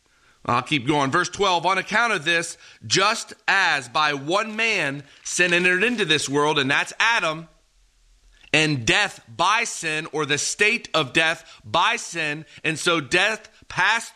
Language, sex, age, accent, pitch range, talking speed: English, male, 30-49, American, 155-205 Hz, 155 wpm